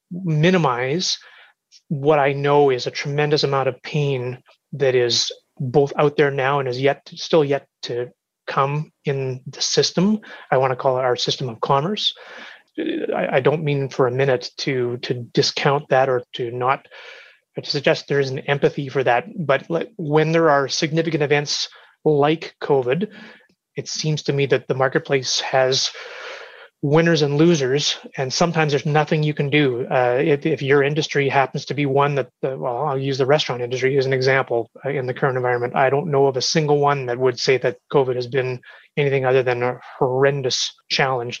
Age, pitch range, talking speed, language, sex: 30-49, 130-155 Hz, 185 wpm, English, male